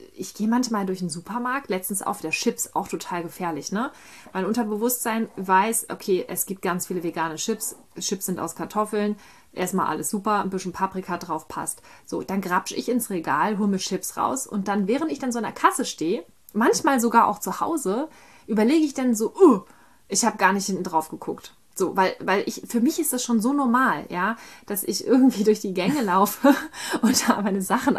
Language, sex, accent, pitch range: German, female, German, 190-235 Hz